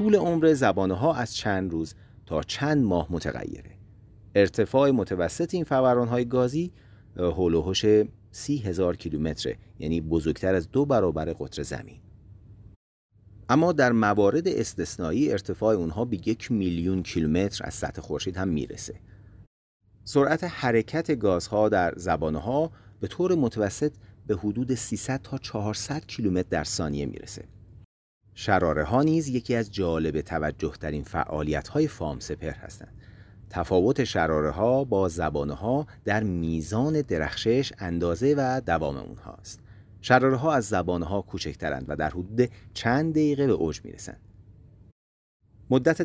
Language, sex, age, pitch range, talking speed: Persian, male, 40-59, 90-125 Hz, 120 wpm